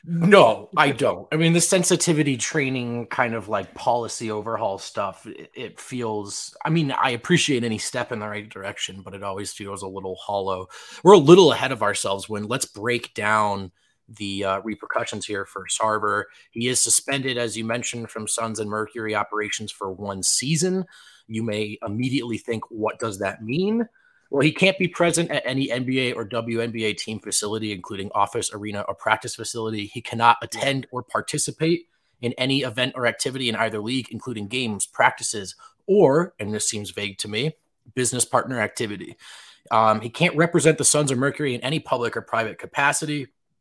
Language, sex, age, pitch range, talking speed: English, male, 30-49, 105-135 Hz, 180 wpm